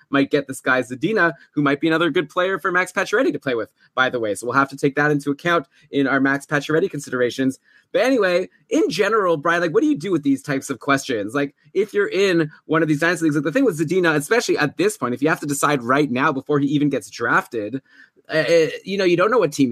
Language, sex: English, male